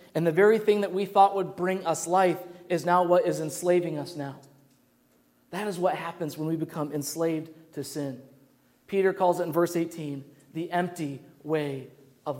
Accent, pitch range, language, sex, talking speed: American, 165-205 Hz, English, male, 185 wpm